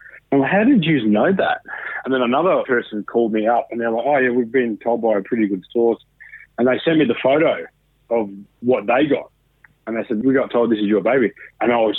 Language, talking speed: English, 245 wpm